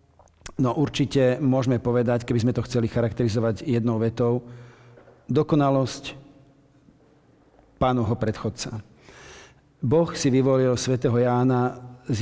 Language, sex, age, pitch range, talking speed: Slovak, male, 50-69, 120-140 Hz, 100 wpm